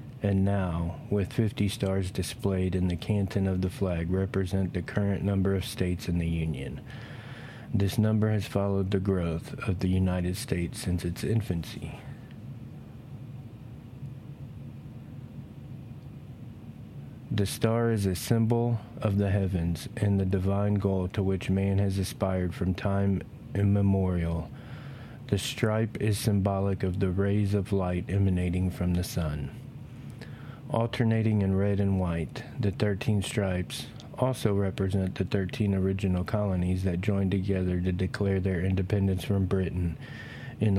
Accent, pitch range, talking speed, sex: American, 95-120 Hz, 135 wpm, male